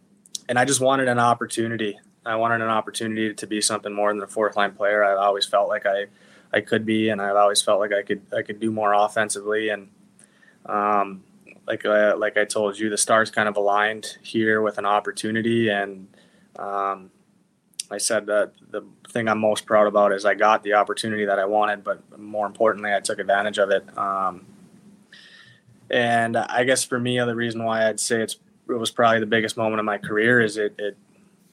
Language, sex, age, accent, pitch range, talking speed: English, male, 20-39, American, 100-115 Hz, 205 wpm